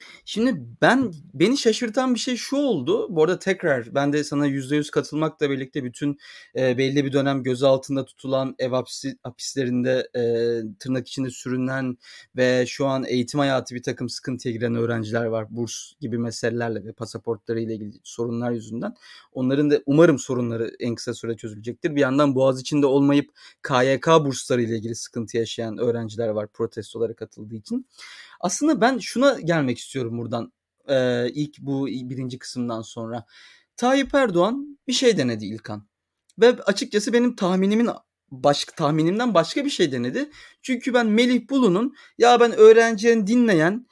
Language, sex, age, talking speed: Turkish, male, 30-49, 155 wpm